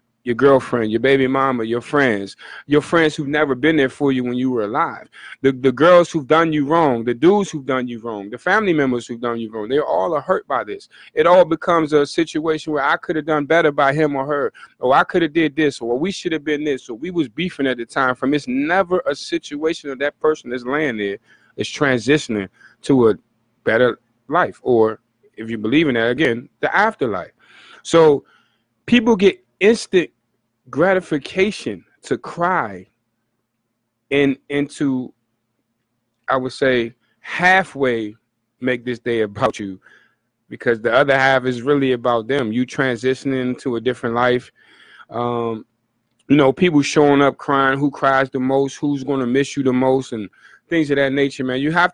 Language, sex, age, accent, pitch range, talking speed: English, male, 30-49, American, 120-155 Hz, 190 wpm